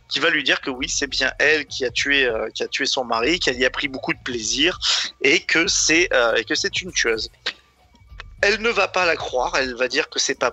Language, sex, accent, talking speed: French, male, French, 270 wpm